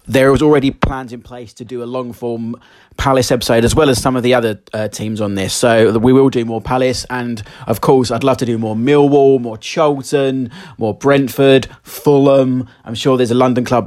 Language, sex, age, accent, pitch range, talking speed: English, male, 30-49, British, 110-130 Hz, 215 wpm